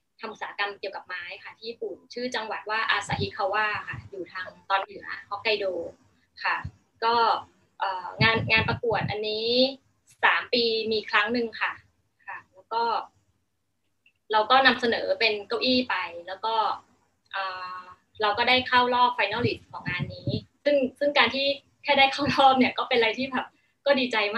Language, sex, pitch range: Thai, female, 200-255 Hz